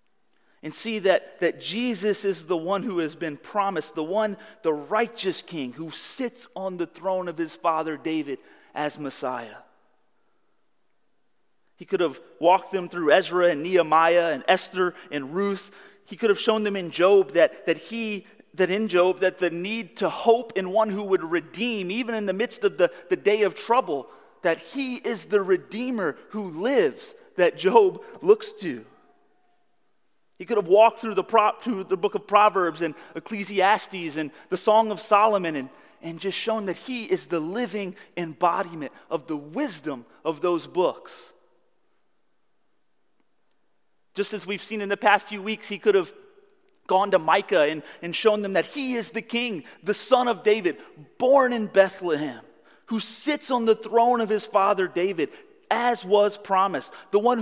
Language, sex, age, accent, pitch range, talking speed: English, male, 30-49, American, 175-235 Hz, 170 wpm